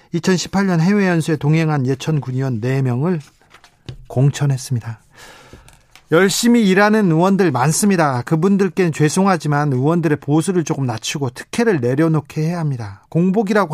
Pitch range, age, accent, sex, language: 145-220 Hz, 40-59, native, male, Korean